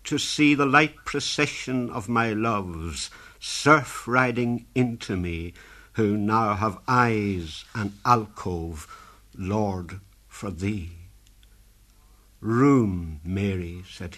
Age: 60-79